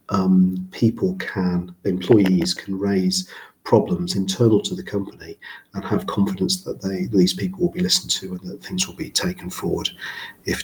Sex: male